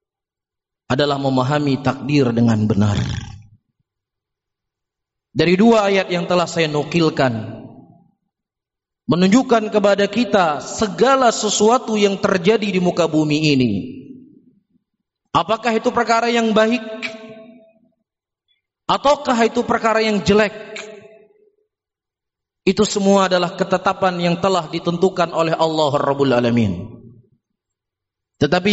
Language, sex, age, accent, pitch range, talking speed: Indonesian, male, 30-49, native, 170-225 Hz, 95 wpm